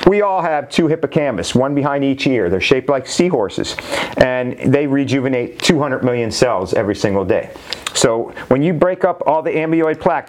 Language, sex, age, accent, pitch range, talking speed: English, male, 40-59, American, 125-155 Hz, 180 wpm